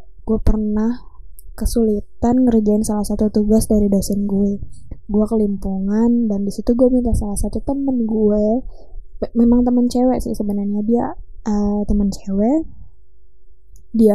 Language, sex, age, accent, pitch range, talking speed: Indonesian, female, 10-29, native, 210-235 Hz, 125 wpm